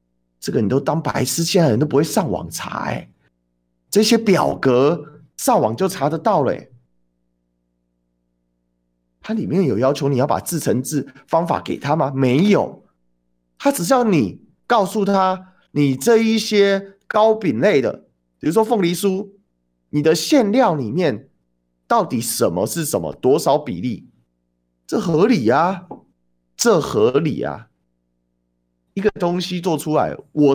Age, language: 30-49, Chinese